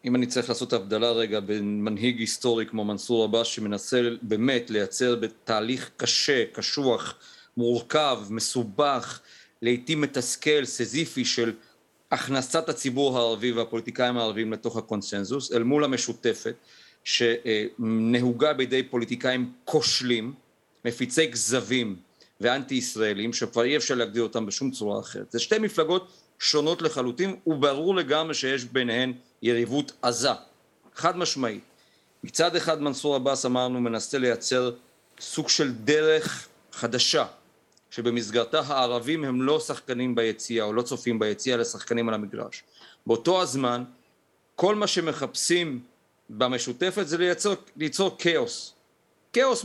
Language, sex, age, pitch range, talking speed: Hebrew, male, 40-59, 115-150 Hz, 115 wpm